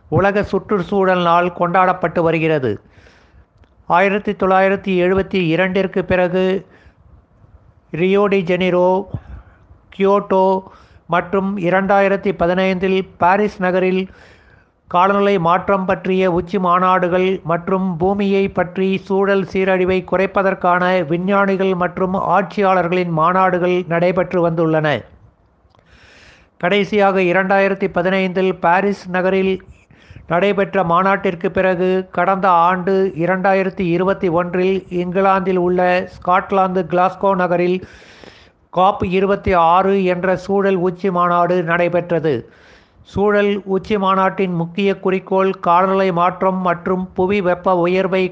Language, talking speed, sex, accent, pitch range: Tamil, 85 wpm, male, native, 175-195 Hz